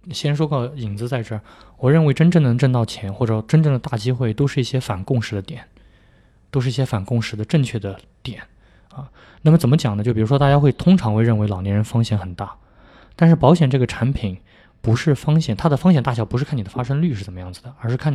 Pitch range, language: 105-135 Hz, Chinese